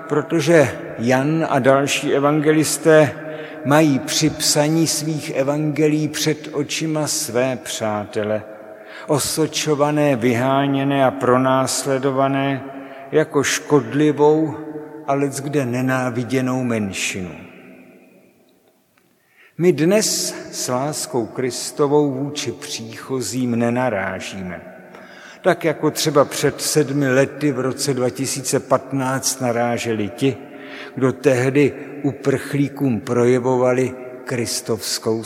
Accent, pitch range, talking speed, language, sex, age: native, 125-150 Hz, 80 wpm, Czech, male, 60-79